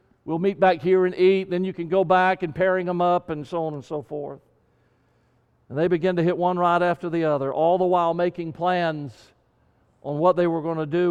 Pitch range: 135-175 Hz